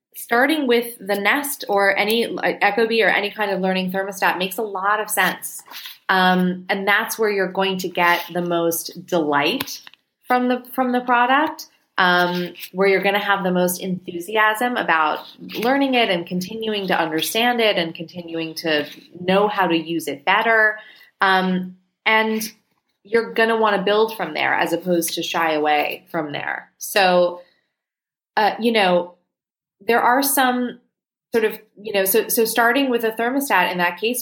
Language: English